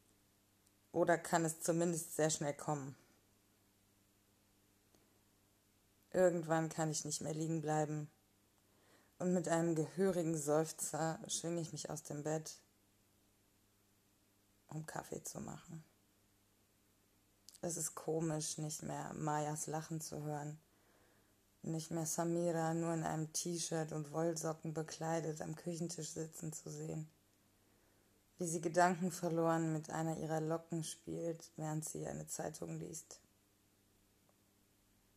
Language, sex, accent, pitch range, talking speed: German, female, German, 100-165 Hz, 115 wpm